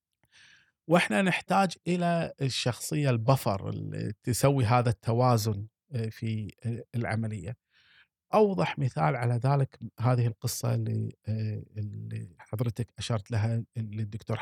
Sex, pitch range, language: male, 110-160 Hz, Arabic